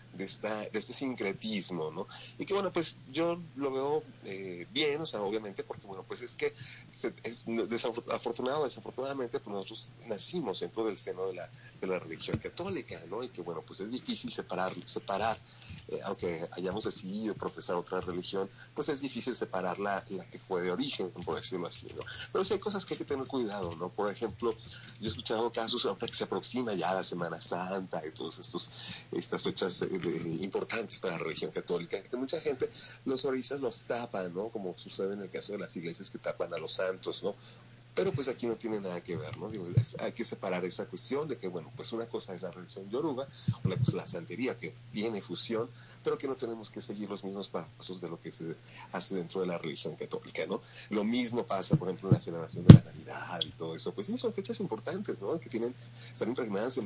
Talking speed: 215 wpm